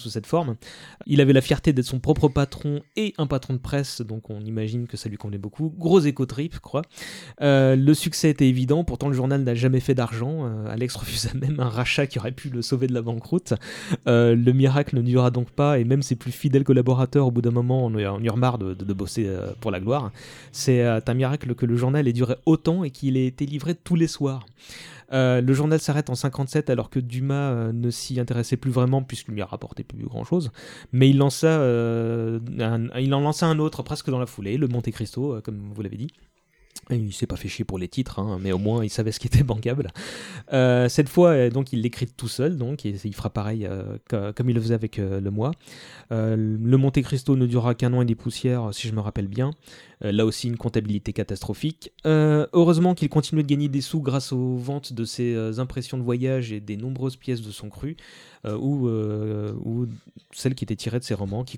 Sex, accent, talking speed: male, French, 235 wpm